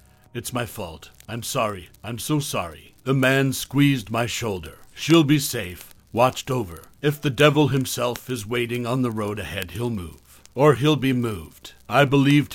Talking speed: 170 wpm